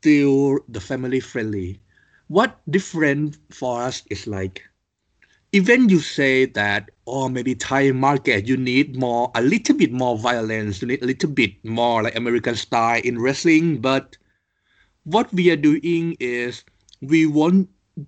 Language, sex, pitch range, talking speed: English, male, 105-135 Hz, 155 wpm